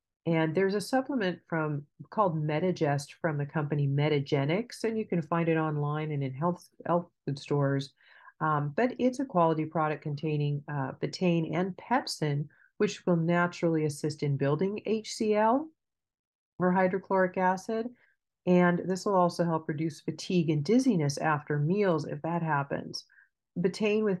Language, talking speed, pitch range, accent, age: English, 150 wpm, 145-185 Hz, American, 40-59